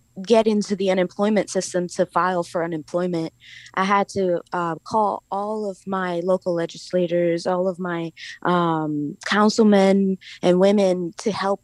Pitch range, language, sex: 175-210 Hz, English, female